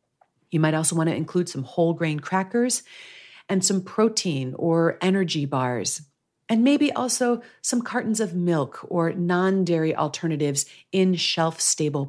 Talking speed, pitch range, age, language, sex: 140 wpm, 160-205 Hz, 40-59, English, female